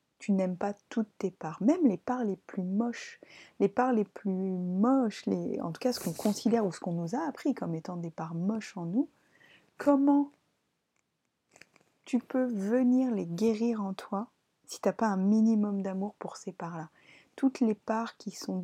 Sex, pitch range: female, 185-230 Hz